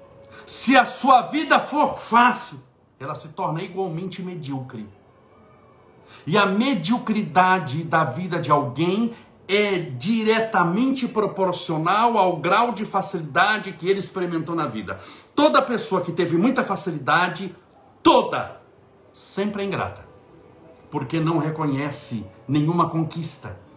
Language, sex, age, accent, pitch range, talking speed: Portuguese, male, 60-79, Brazilian, 155-210 Hz, 115 wpm